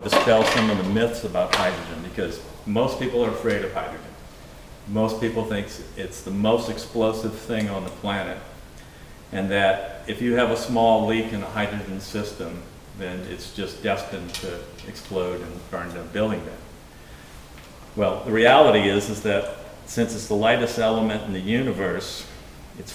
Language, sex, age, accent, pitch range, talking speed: English, male, 50-69, American, 95-115 Hz, 160 wpm